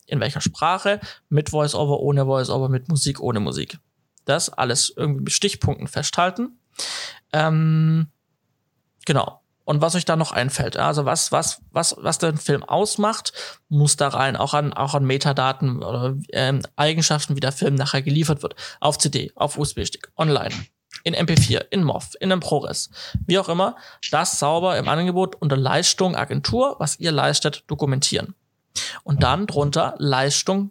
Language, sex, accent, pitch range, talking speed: German, male, German, 140-160 Hz, 155 wpm